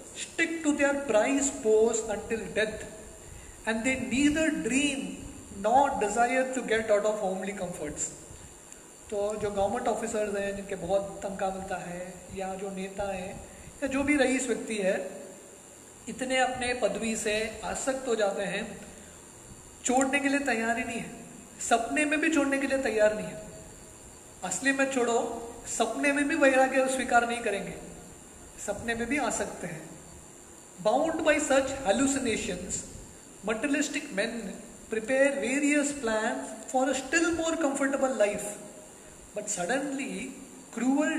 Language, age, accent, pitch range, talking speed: English, 20-39, Indian, 205-270 Hz, 110 wpm